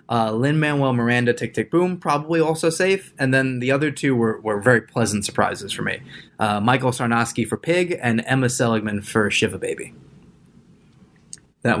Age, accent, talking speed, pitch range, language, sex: 20-39, American, 170 wpm, 110-140 Hz, English, male